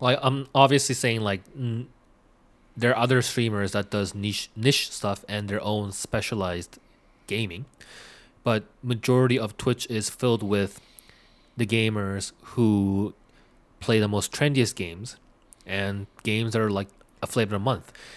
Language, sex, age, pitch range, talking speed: English, male, 20-39, 105-130 Hz, 145 wpm